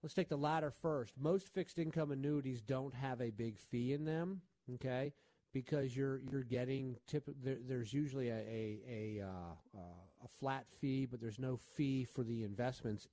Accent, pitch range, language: American, 115-150 Hz, English